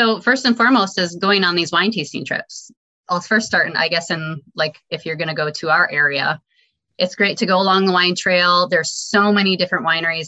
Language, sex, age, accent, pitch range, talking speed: English, female, 20-39, American, 160-200 Hz, 235 wpm